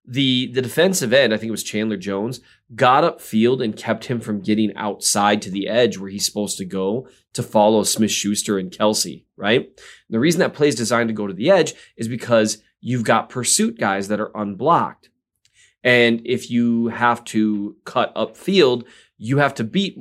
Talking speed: 190 wpm